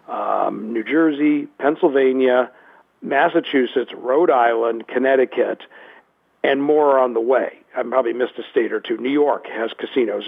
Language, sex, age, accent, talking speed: English, male, 50-69, American, 140 wpm